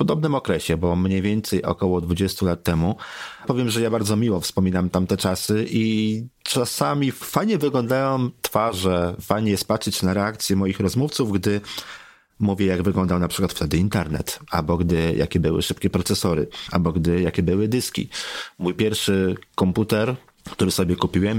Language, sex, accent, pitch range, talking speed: Polish, male, native, 90-110 Hz, 155 wpm